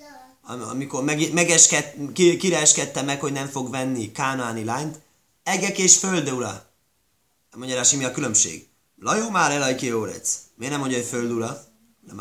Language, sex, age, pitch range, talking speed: Hungarian, male, 20-39, 115-185 Hz, 135 wpm